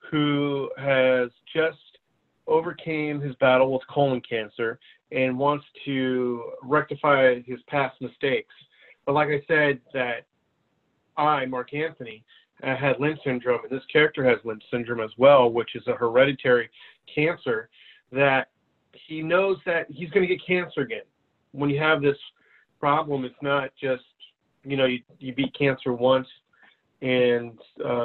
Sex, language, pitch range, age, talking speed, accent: male, English, 125-150 Hz, 30-49, 140 wpm, American